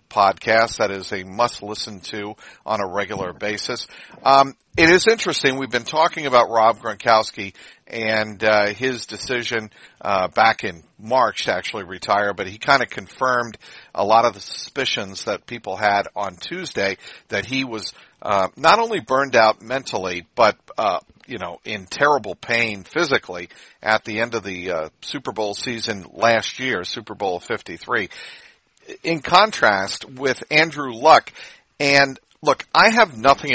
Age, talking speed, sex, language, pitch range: 50-69, 160 wpm, male, English, 105-135 Hz